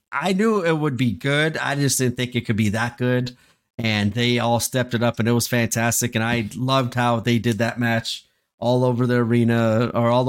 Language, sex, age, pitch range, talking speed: English, male, 30-49, 115-130 Hz, 225 wpm